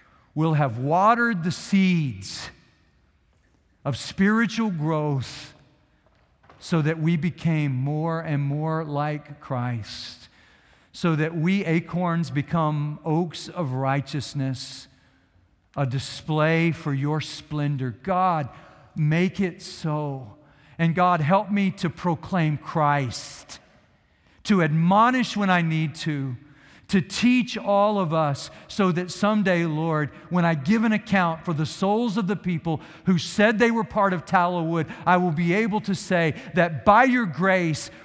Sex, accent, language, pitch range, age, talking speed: male, American, English, 135-185 Hz, 50-69, 130 wpm